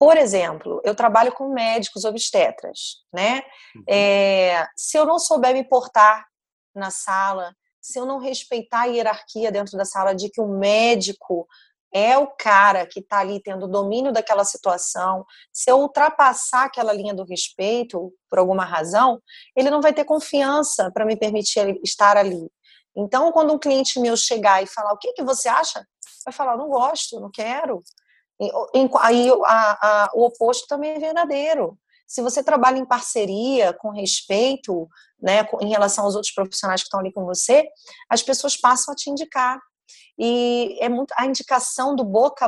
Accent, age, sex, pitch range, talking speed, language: Brazilian, 30-49, female, 200-265 Hz, 170 wpm, Portuguese